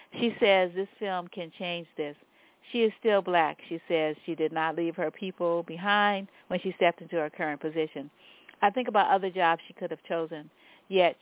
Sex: female